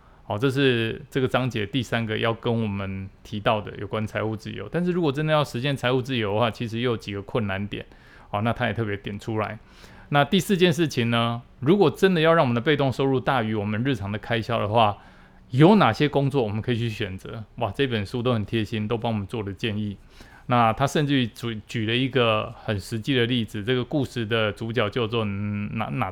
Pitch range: 110-135 Hz